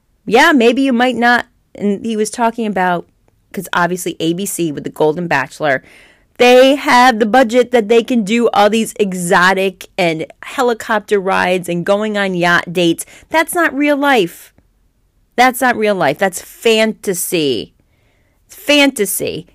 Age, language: 30-49, English